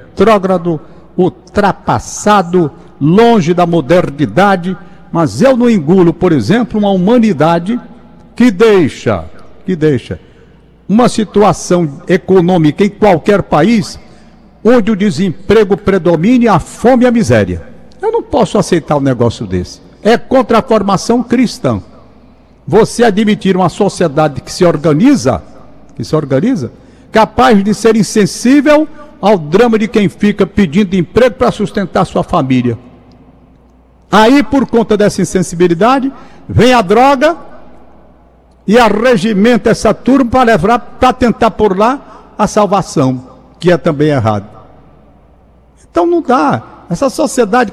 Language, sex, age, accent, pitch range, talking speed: Portuguese, male, 60-79, Brazilian, 175-240 Hz, 125 wpm